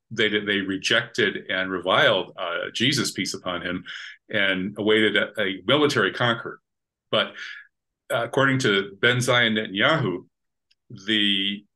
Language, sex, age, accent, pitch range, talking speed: English, male, 40-59, American, 100-115 Hz, 120 wpm